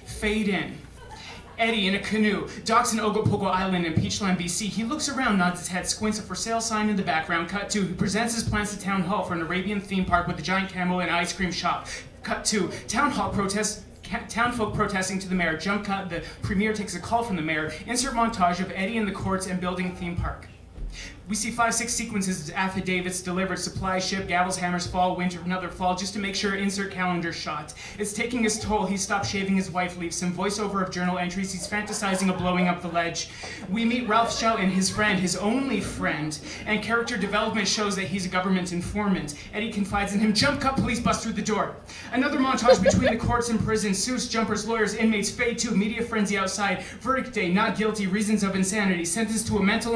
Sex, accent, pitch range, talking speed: male, American, 185-215 Hz, 220 wpm